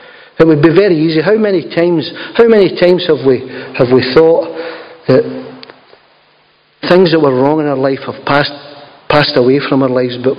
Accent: British